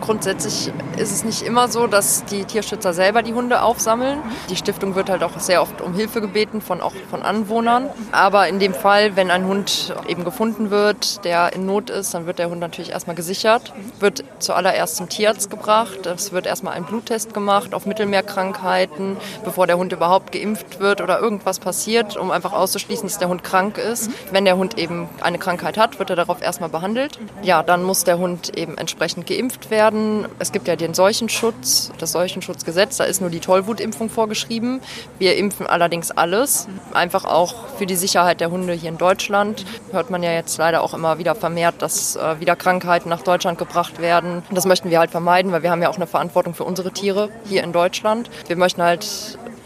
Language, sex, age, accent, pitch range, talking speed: German, female, 20-39, German, 175-215 Hz, 195 wpm